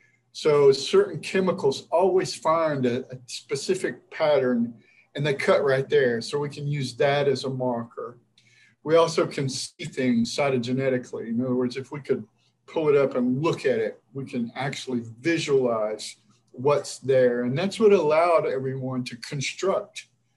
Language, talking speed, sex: English, 160 wpm, male